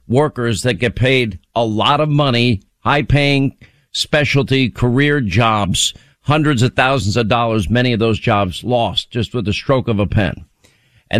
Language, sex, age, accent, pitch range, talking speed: English, male, 50-69, American, 120-150 Hz, 165 wpm